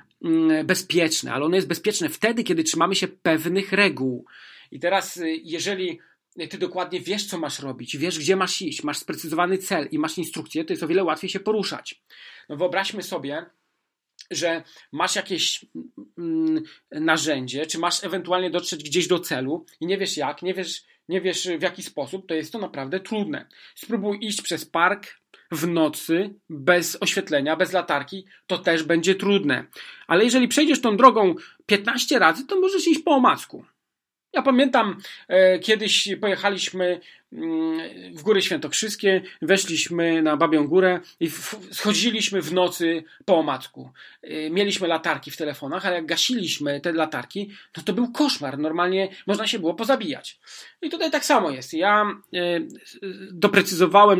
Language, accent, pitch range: Polish, native, 165-205 Hz